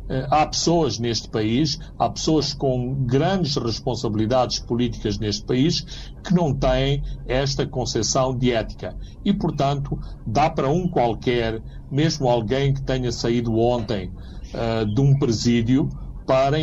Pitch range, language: 120-150 Hz, Portuguese